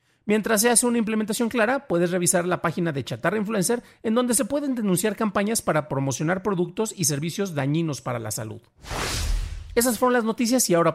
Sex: male